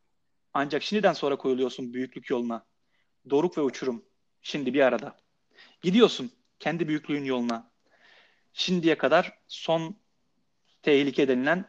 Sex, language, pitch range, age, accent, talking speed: male, Turkish, 140-180 Hz, 30-49, native, 110 wpm